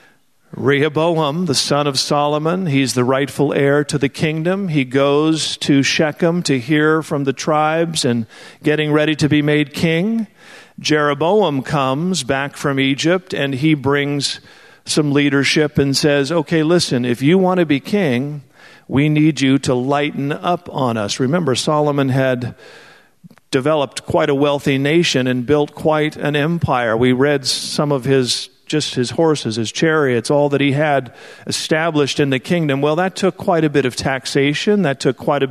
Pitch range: 135-160 Hz